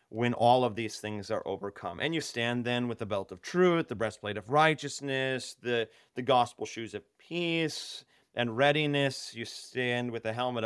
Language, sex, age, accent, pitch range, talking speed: English, male, 30-49, American, 120-165 Hz, 185 wpm